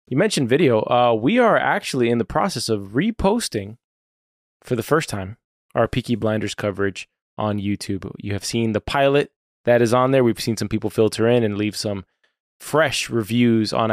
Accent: American